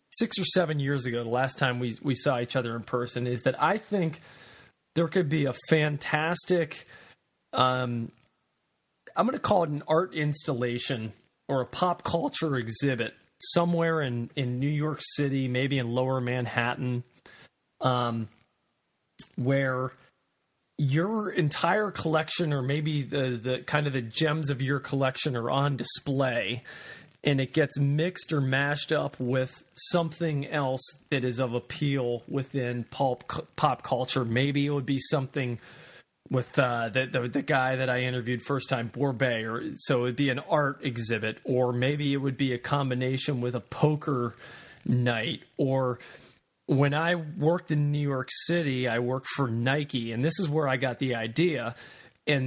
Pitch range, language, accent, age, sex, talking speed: 125-150 Hz, English, American, 30-49, male, 160 wpm